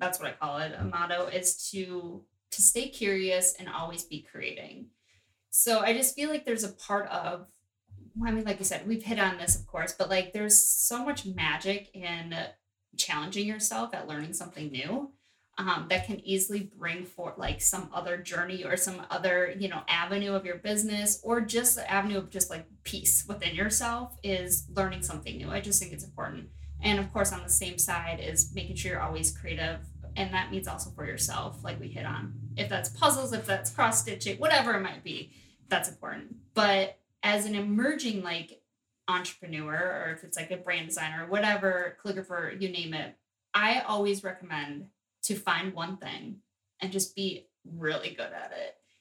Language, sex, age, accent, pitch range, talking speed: English, female, 20-39, American, 155-205 Hz, 190 wpm